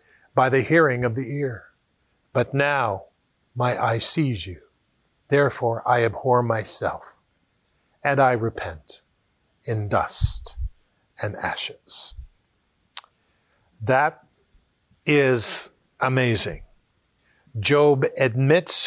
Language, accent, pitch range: English, American, 115-155 Hz